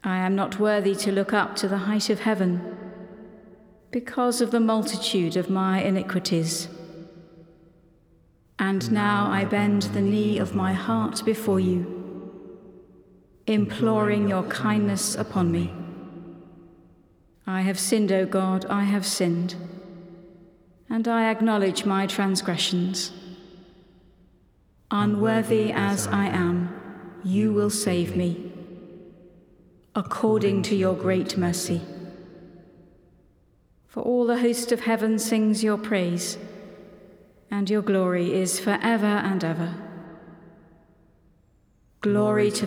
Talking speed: 110 wpm